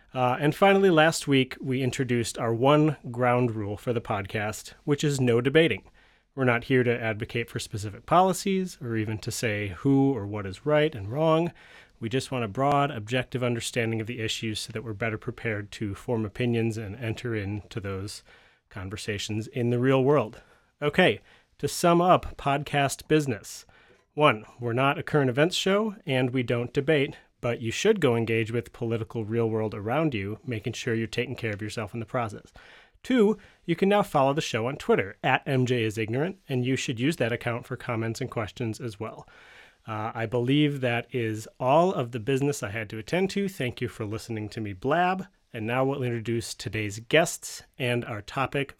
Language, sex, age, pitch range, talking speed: English, male, 30-49, 110-140 Hz, 190 wpm